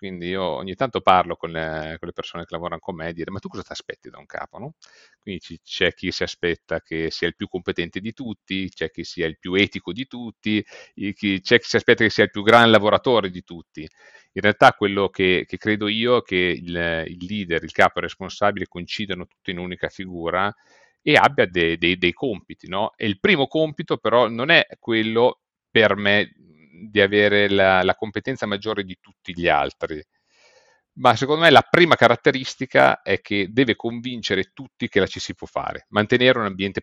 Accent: native